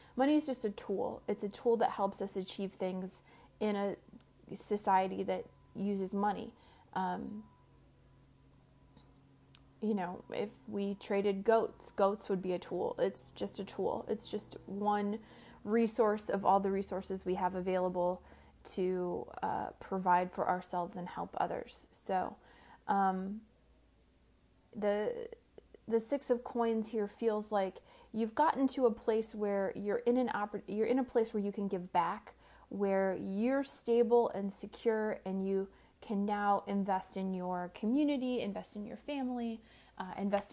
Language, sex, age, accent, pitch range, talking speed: English, female, 30-49, American, 195-235 Hz, 150 wpm